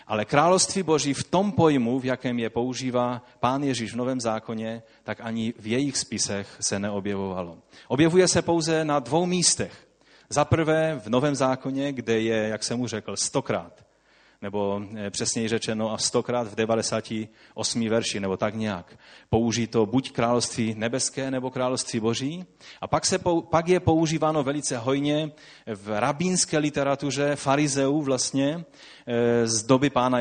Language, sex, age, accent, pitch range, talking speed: Czech, male, 30-49, native, 115-145 Hz, 150 wpm